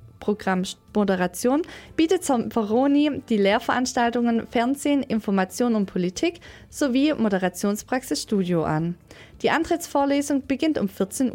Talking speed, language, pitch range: 100 wpm, English, 190-275 Hz